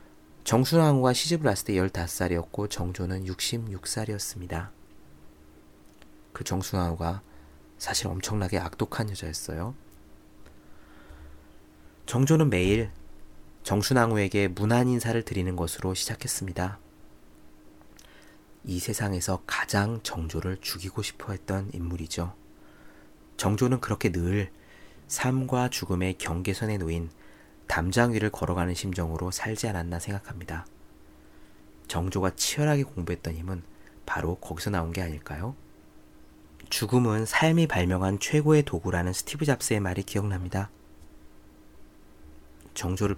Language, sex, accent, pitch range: Korean, male, native, 75-105 Hz